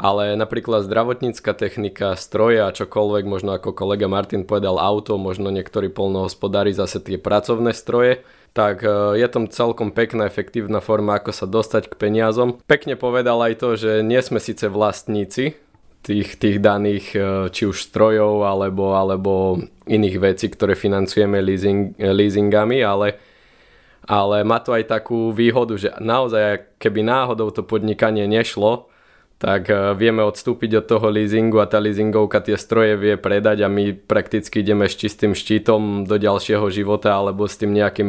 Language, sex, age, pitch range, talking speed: Slovak, male, 20-39, 95-110 Hz, 150 wpm